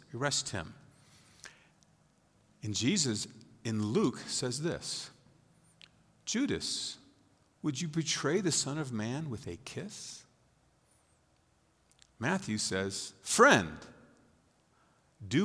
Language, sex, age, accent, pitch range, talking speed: English, male, 50-69, American, 110-145 Hz, 90 wpm